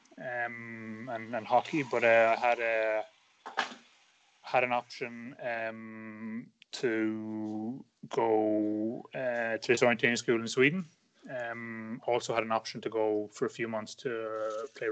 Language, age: English, 20-39